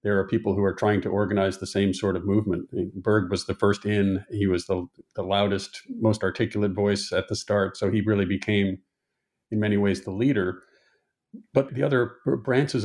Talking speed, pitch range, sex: 195 wpm, 95-110 Hz, male